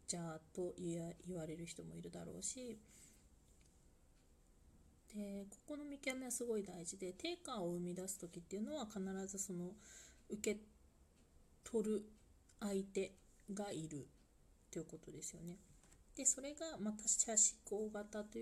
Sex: female